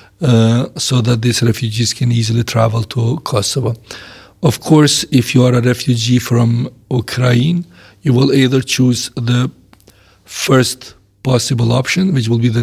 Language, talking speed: English, 145 wpm